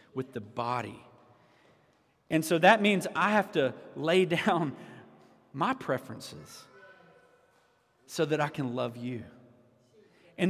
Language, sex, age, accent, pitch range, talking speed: English, male, 40-59, American, 125-180 Hz, 120 wpm